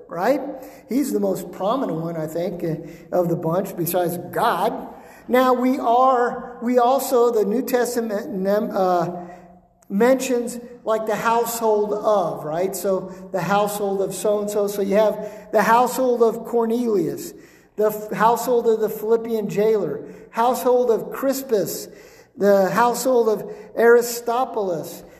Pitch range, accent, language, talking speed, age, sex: 185-235 Hz, American, English, 130 wpm, 50-69, male